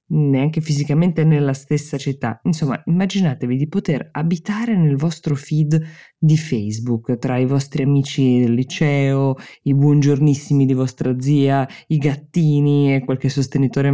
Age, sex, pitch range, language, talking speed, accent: 20-39, female, 125-160 Hz, Italian, 135 wpm, native